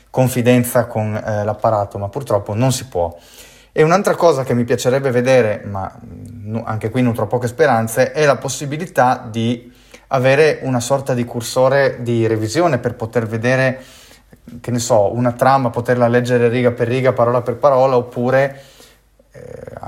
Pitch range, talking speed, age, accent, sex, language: 110-130 Hz, 155 wpm, 30-49, native, male, Italian